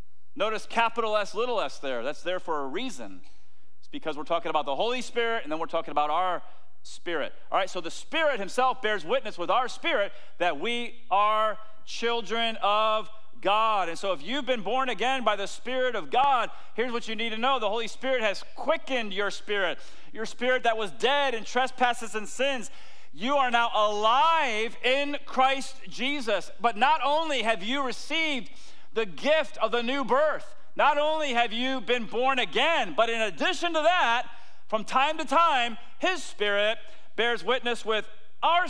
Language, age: English, 40-59